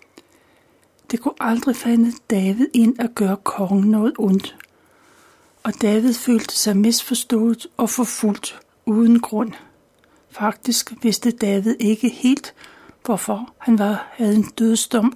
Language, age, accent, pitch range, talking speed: Danish, 60-79, native, 205-240 Hz, 125 wpm